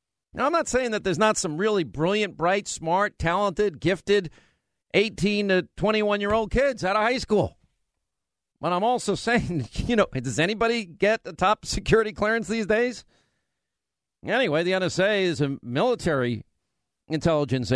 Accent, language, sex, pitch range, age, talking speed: American, English, male, 145-205 Hz, 50-69, 150 wpm